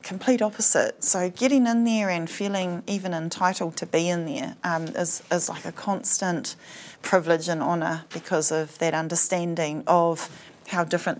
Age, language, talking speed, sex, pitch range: 30-49, English, 160 wpm, female, 165-205 Hz